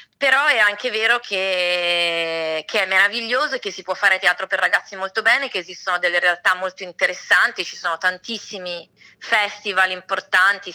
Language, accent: Italian, native